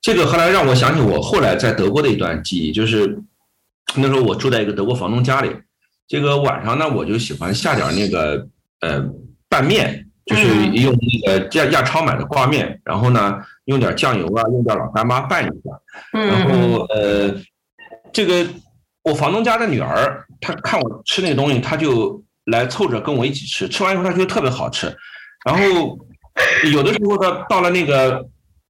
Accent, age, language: native, 50-69, Chinese